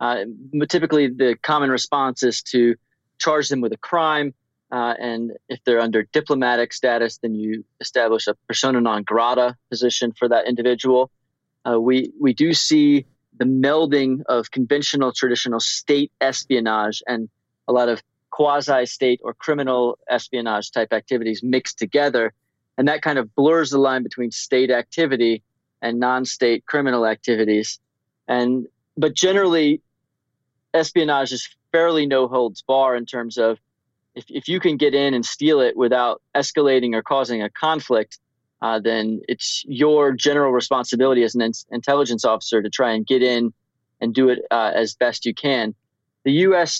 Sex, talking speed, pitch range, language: male, 155 wpm, 115-140 Hz, English